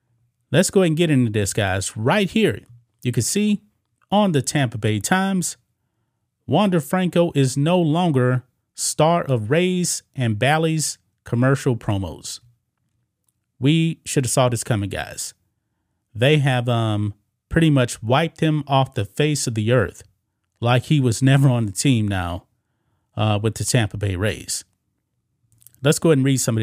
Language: English